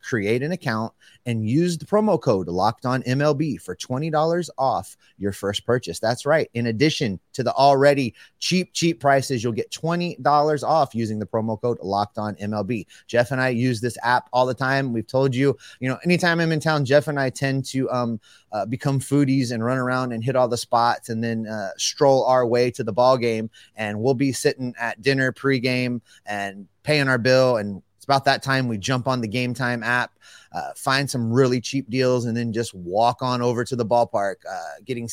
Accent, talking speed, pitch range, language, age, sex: American, 210 wpm, 115-150 Hz, English, 30-49, male